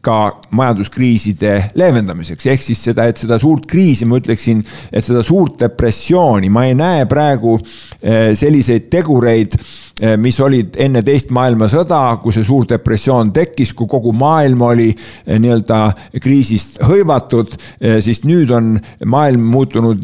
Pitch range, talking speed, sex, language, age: 110-135 Hz, 130 wpm, male, English, 50-69